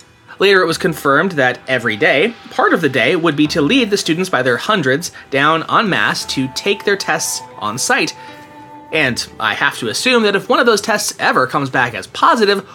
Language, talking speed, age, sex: English, 210 wpm, 30-49, male